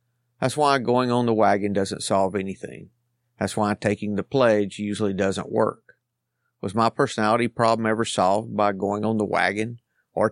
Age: 50-69